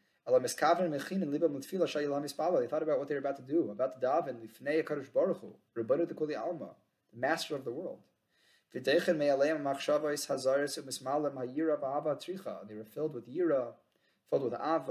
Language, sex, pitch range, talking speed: English, male, 130-165 Hz, 95 wpm